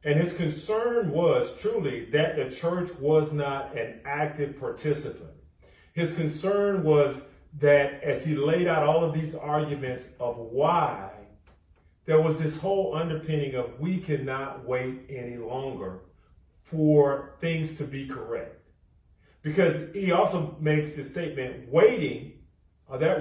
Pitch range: 135-175 Hz